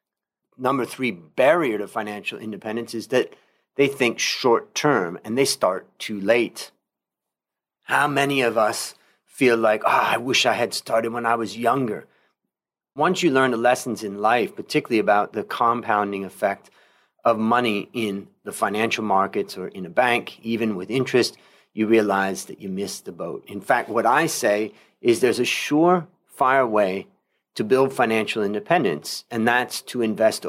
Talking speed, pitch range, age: 165 wpm, 110-130 Hz, 30-49